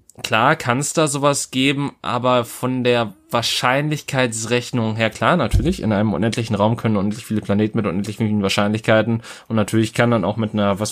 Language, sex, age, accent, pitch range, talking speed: German, male, 20-39, German, 105-120 Hz, 180 wpm